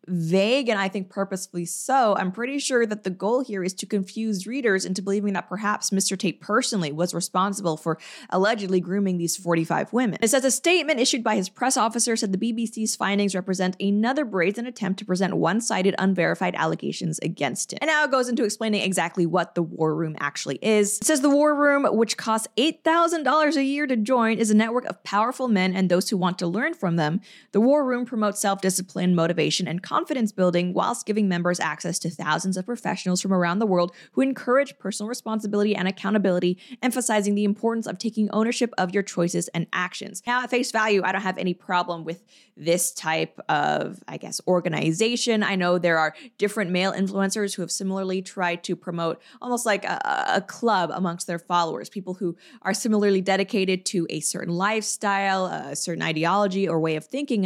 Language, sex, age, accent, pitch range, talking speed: English, female, 20-39, American, 180-225 Hz, 195 wpm